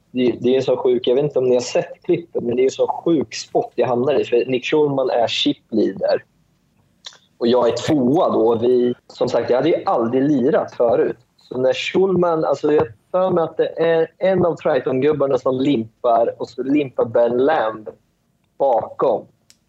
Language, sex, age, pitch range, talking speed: English, male, 30-49, 115-170 Hz, 185 wpm